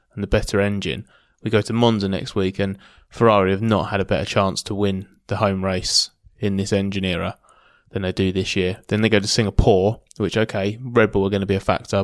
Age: 20-39